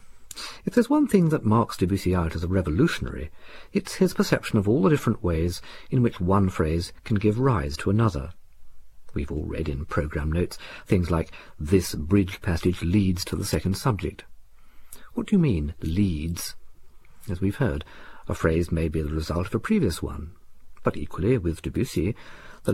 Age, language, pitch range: 50-69, English, 80-115 Hz